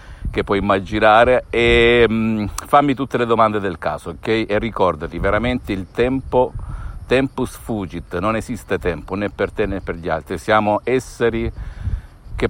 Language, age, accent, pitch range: Italian, 50-69, native, 95-115 Hz